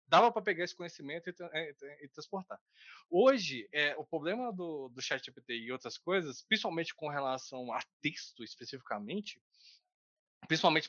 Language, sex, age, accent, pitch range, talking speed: Portuguese, male, 20-39, Brazilian, 140-220 Hz, 155 wpm